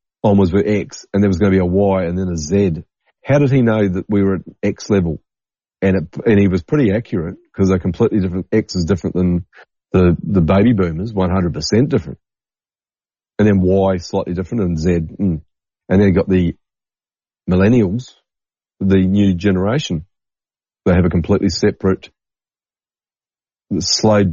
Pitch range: 90-100 Hz